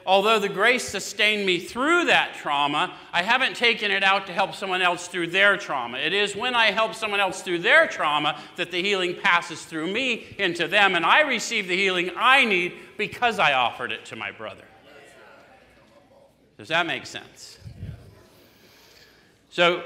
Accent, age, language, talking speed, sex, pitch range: American, 50-69, English, 170 wpm, male, 175-220 Hz